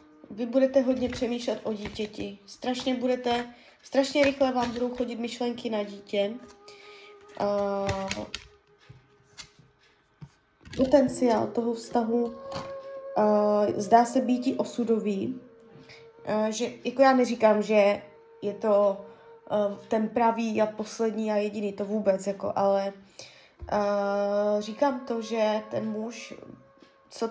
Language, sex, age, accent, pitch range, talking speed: Czech, female, 20-39, native, 205-250 Hz, 110 wpm